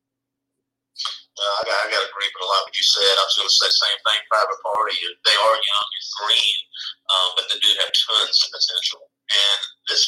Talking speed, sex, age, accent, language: 230 wpm, male, 40-59, American, English